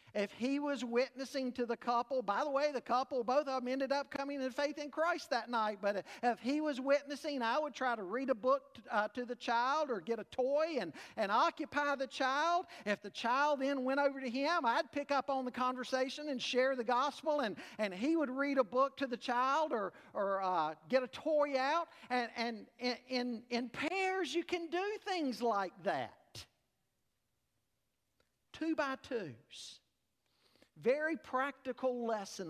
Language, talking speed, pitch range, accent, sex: English, 185 wpm, 230-285 Hz, American, male